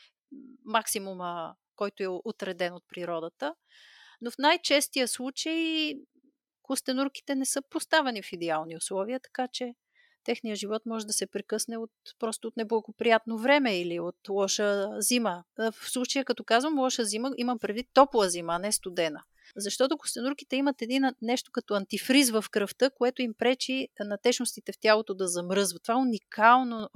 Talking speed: 150 wpm